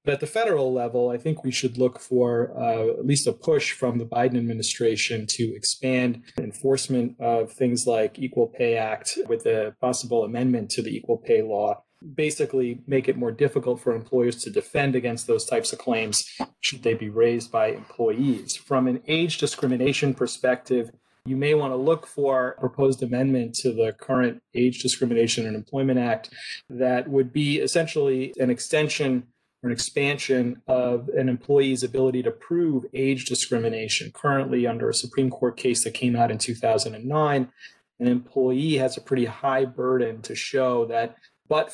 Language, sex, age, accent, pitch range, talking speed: English, male, 30-49, American, 120-135 Hz, 170 wpm